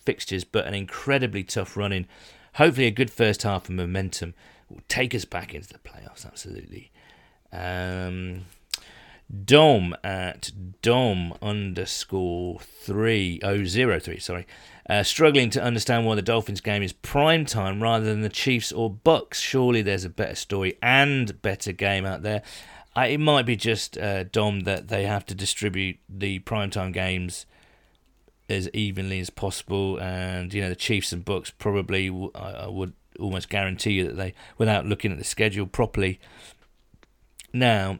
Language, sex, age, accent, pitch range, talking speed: English, male, 40-59, British, 95-115 Hz, 160 wpm